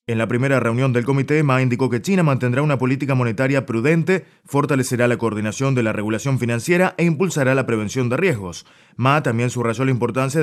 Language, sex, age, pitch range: Chinese, male, 20-39, 120-150 Hz